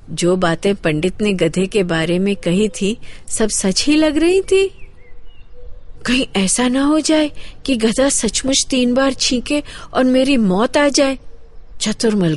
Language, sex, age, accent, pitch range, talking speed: Hindi, female, 50-69, native, 185-275 Hz, 160 wpm